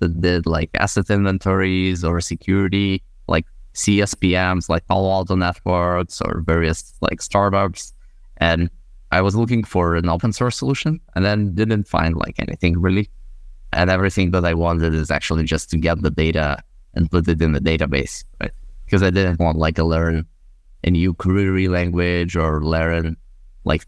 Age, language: 20-39, English